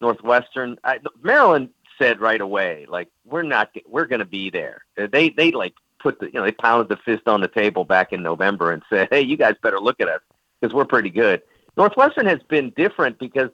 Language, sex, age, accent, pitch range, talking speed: English, male, 50-69, American, 95-120 Hz, 215 wpm